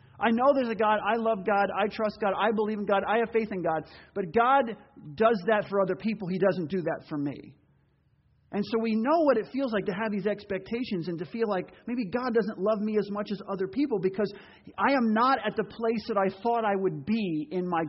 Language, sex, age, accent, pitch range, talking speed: English, male, 40-59, American, 200-250 Hz, 250 wpm